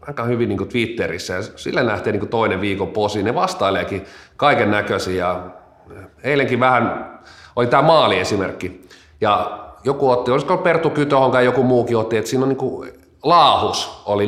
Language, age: Finnish, 30-49